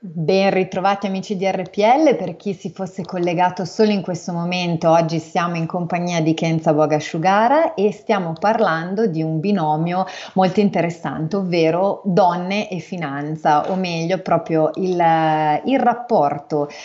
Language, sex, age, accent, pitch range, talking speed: Italian, female, 30-49, native, 155-190 Hz, 140 wpm